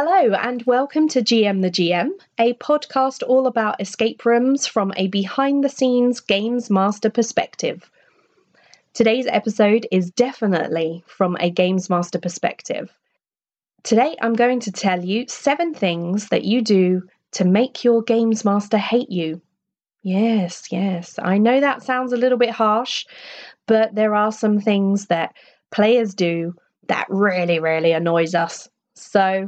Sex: female